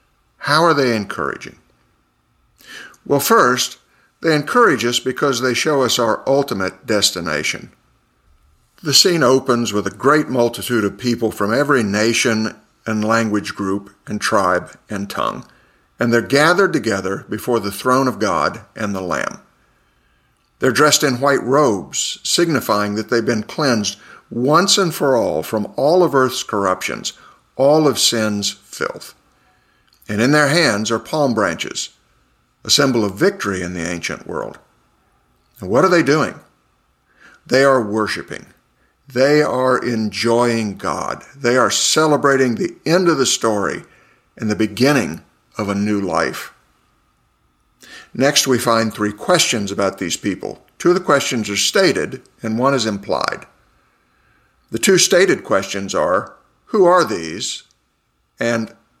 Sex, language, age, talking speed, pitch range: male, English, 50-69, 140 wpm, 95-125 Hz